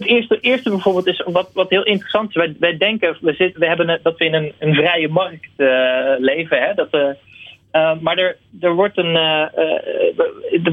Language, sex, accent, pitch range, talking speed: Dutch, male, Dutch, 145-190 Hz, 155 wpm